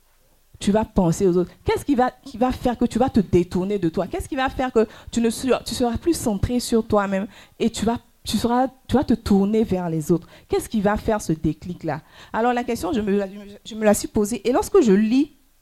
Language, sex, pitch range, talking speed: French, female, 150-215 Hz, 250 wpm